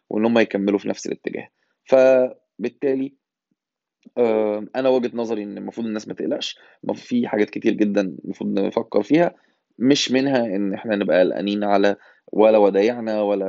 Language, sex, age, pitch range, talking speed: Arabic, male, 20-39, 105-120 Hz, 145 wpm